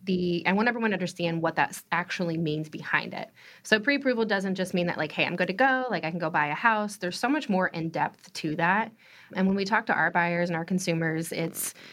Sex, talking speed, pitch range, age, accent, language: female, 240 wpm, 165-195 Hz, 20-39, American, English